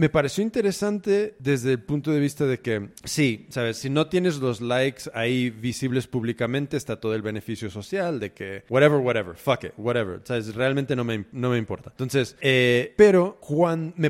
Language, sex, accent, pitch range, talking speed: Spanish, male, Mexican, 125-165 Hz, 190 wpm